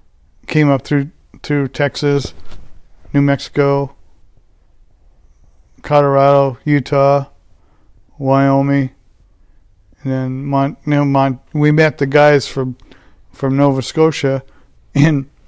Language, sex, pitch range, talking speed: English, male, 105-155 Hz, 95 wpm